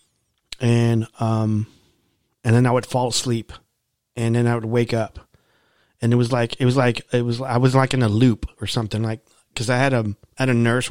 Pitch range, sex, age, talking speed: 115-130 Hz, male, 30-49, 220 wpm